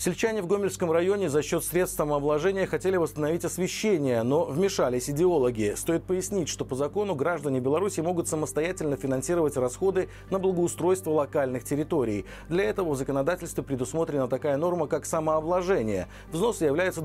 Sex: male